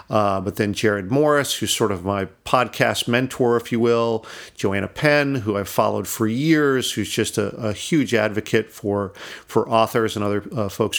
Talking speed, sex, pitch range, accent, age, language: 185 wpm, male, 110-140 Hz, American, 40-59, English